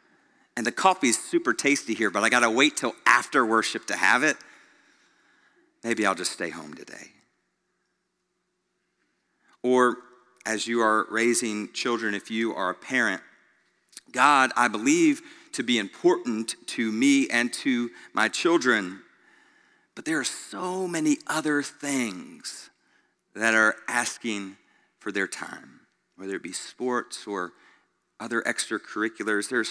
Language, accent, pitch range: English, American, 110-145 Hz